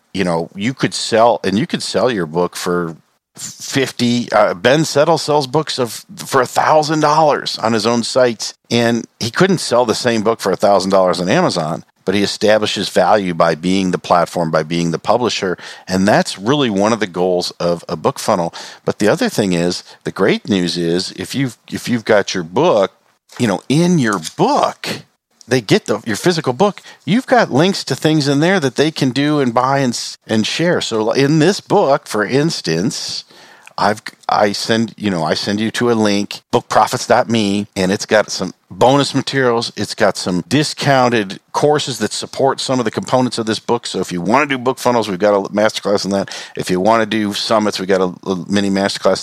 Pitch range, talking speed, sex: 95-140 Hz, 200 wpm, male